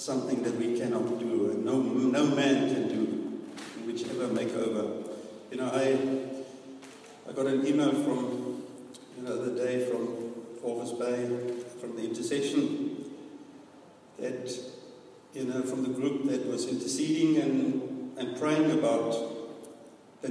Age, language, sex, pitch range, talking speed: 60-79, English, male, 115-135 Hz, 135 wpm